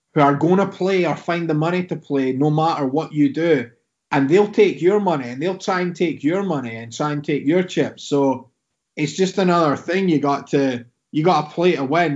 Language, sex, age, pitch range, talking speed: English, male, 30-49, 140-175 Hz, 230 wpm